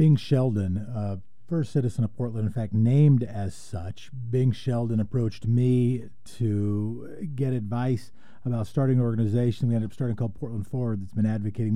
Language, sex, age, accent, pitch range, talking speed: English, male, 40-59, American, 110-145 Hz, 175 wpm